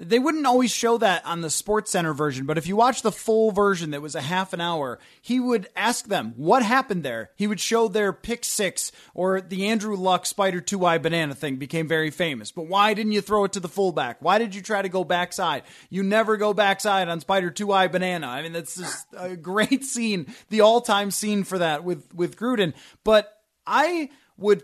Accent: American